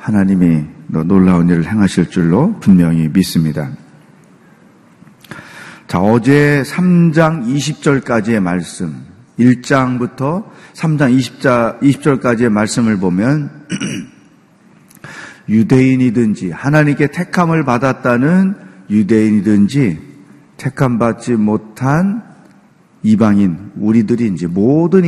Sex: male